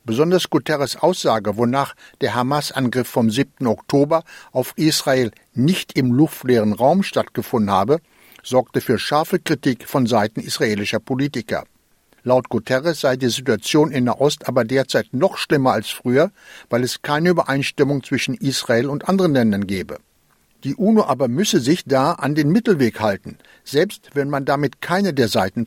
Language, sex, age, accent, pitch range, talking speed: German, male, 60-79, German, 120-155 Hz, 155 wpm